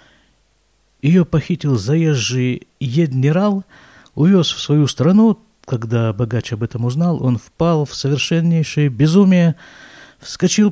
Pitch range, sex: 120-170 Hz, male